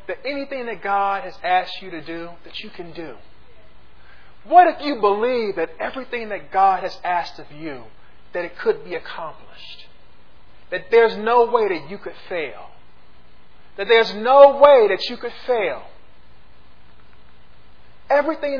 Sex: male